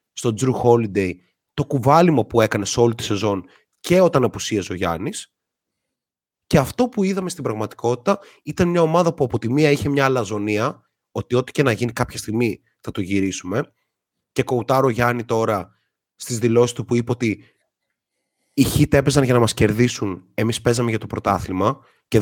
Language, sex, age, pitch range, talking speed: Greek, male, 30-49, 105-145 Hz, 180 wpm